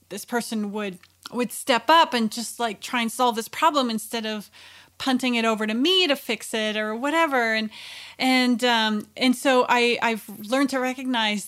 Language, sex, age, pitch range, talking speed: English, female, 30-49, 210-255 Hz, 190 wpm